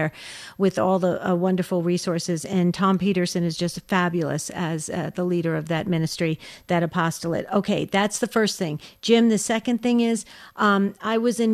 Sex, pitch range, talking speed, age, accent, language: female, 175-210 Hz, 180 wpm, 50-69, American, English